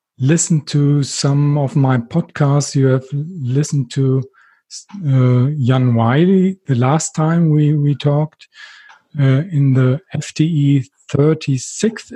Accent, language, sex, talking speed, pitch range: German, English, male, 120 wpm, 135-165 Hz